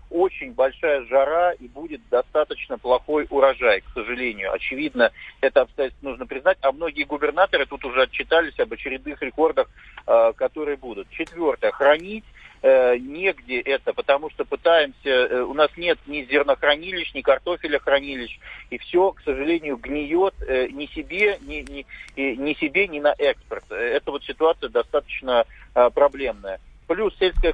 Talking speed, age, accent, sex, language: 145 wpm, 50-69, native, male, Russian